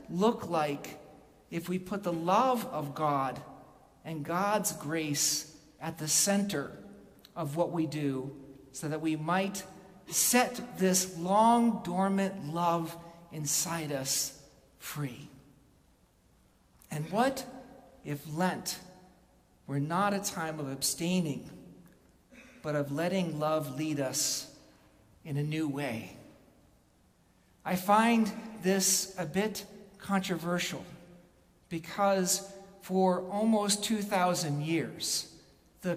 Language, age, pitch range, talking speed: English, 50-69, 155-195 Hz, 105 wpm